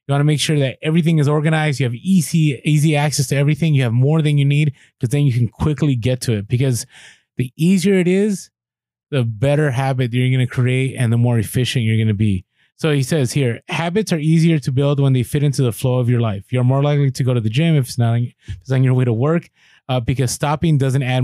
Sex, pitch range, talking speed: male, 120-150 Hz, 250 wpm